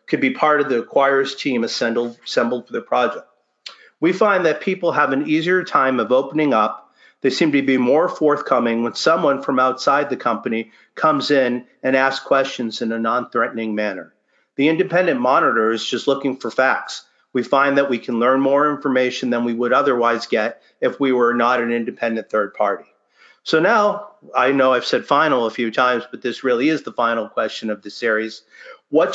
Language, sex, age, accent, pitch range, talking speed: English, male, 50-69, American, 120-140 Hz, 190 wpm